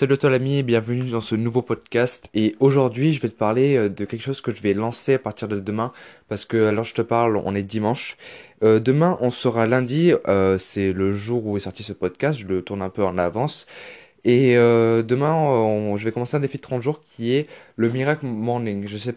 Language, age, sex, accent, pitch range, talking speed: French, 20-39, male, French, 105-130 Hz, 230 wpm